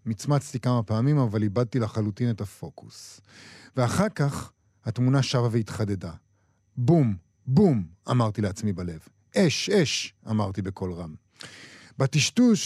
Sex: male